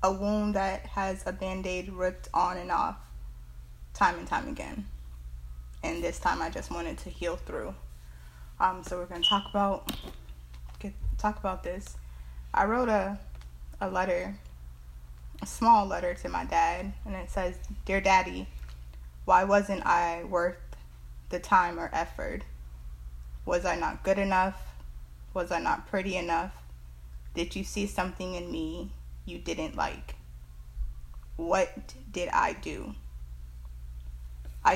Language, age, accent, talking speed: English, 20-39, American, 140 wpm